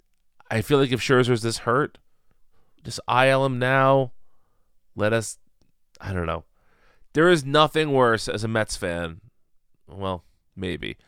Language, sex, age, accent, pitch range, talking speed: English, male, 30-49, American, 100-135 Hz, 140 wpm